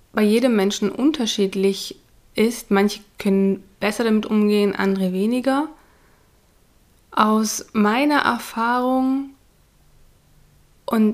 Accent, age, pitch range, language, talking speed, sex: German, 20-39, 190-230 Hz, German, 85 wpm, female